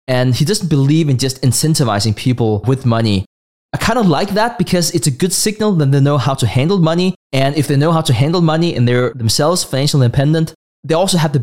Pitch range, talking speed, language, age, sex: 125-160 Hz, 230 wpm, English, 20-39, male